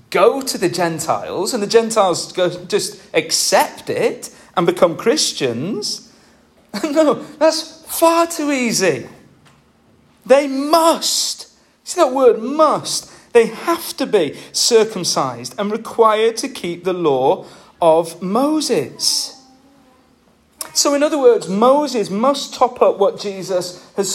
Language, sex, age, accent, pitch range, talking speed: English, male, 40-59, British, 175-285 Hz, 120 wpm